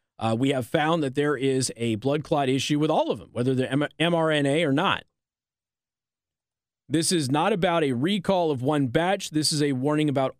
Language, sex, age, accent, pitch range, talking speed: English, male, 30-49, American, 125-155 Hz, 195 wpm